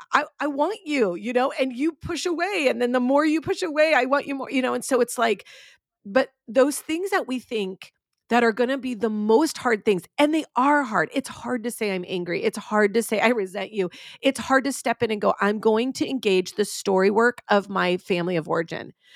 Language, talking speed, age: English, 245 wpm, 40-59